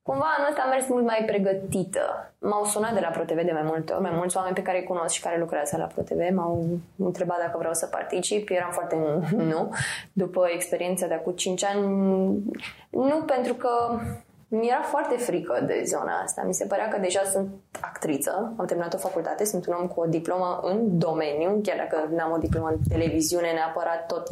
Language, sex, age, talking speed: Romanian, female, 20-39, 200 wpm